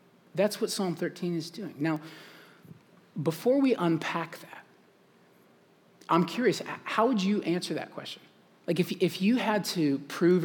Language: English